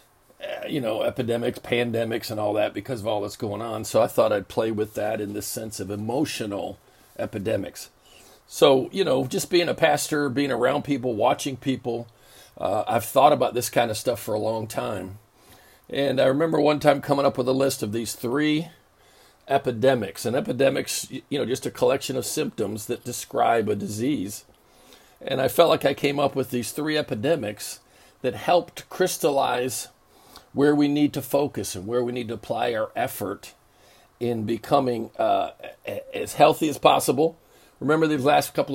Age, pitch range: 50-69, 115-145 Hz